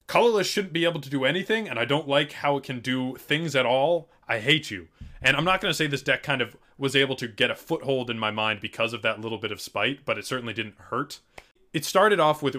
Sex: male